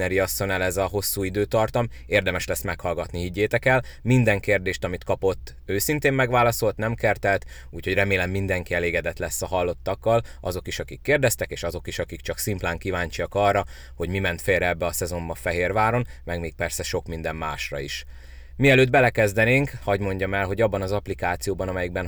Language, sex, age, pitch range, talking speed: Hungarian, male, 30-49, 85-105 Hz, 170 wpm